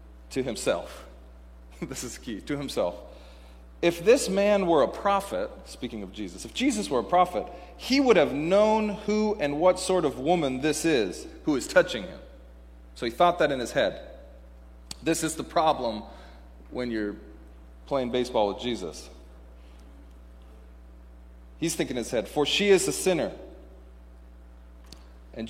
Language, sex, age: English, male, 40-59